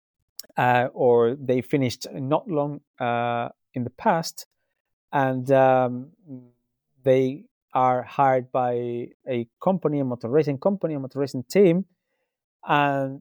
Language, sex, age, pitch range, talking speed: English, male, 30-49, 125-145 Hz, 125 wpm